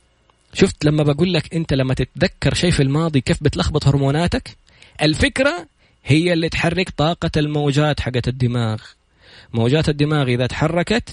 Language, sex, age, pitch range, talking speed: Arabic, male, 20-39, 115-170 Hz, 130 wpm